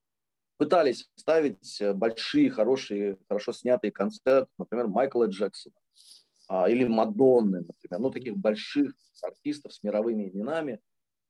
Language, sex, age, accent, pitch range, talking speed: Russian, male, 30-49, native, 105-165 Hz, 100 wpm